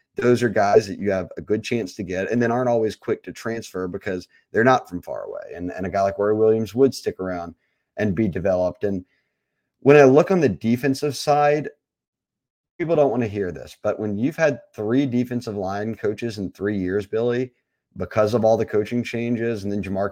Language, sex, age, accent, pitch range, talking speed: English, male, 30-49, American, 95-115 Hz, 215 wpm